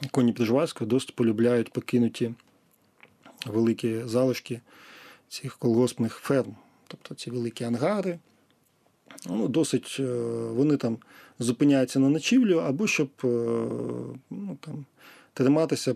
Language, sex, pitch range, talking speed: Ukrainian, male, 115-140 Hz, 100 wpm